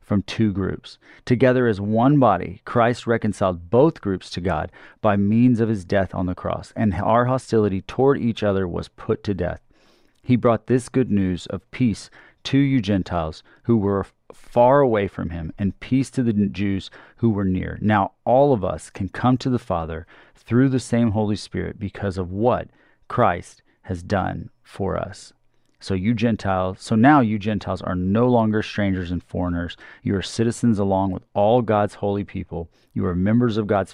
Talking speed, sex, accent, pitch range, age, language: 185 wpm, male, American, 90-115 Hz, 30-49, English